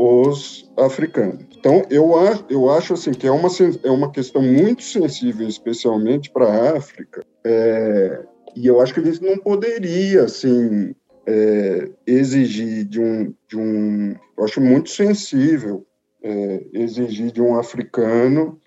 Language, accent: Portuguese, Brazilian